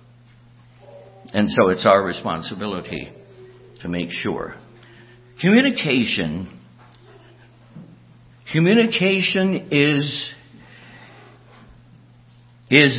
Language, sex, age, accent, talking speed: English, male, 60-79, American, 55 wpm